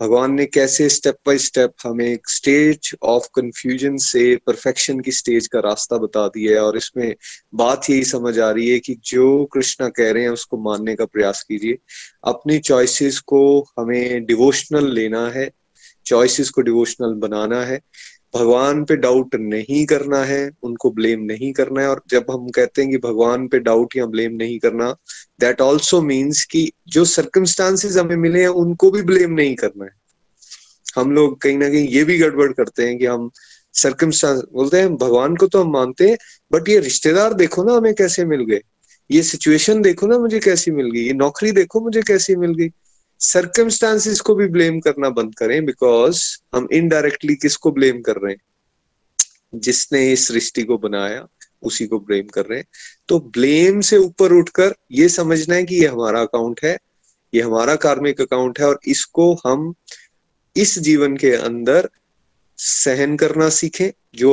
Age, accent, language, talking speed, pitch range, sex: 20-39, native, Hindi, 175 wpm, 120-170 Hz, male